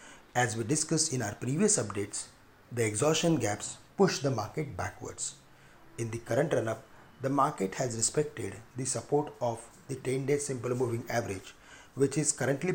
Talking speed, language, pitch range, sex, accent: 155 wpm, English, 115-145 Hz, male, Indian